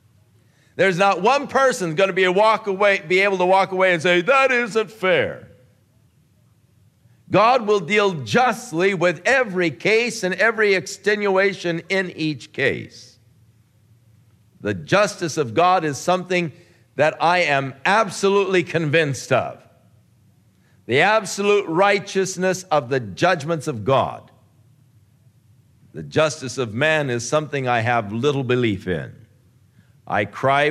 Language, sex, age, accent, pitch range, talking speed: English, male, 50-69, American, 115-170 Hz, 120 wpm